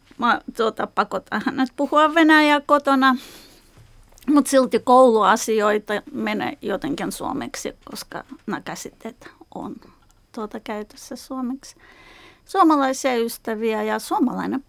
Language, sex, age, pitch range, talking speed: Finnish, female, 30-49, 235-295 Hz, 100 wpm